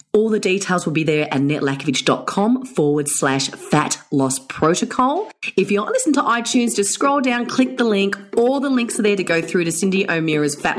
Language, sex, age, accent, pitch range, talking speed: English, female, 30-49, Australian, 140-205 Hz, 210 wpm